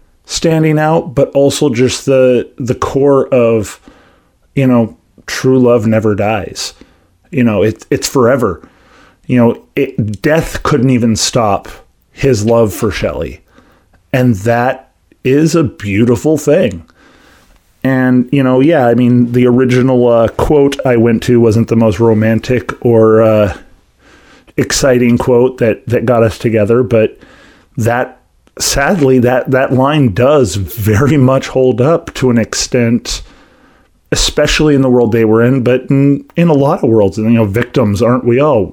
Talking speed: 150 wpm